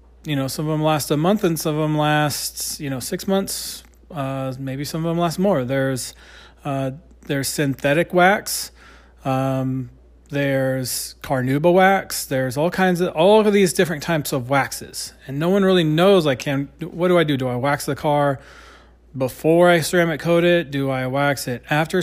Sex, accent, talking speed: male, American, 190 wpm